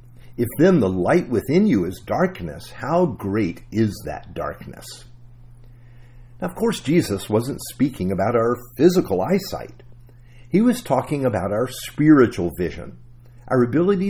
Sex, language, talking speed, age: male, English, 135 wpm, 50-69